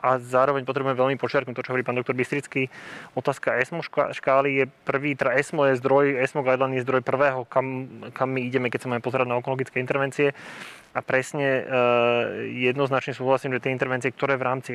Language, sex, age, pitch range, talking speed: Slovak, male, 20-39, 125-135 Hz, 195 wpm